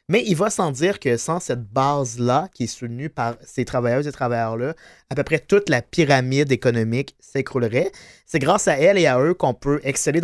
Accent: Canadian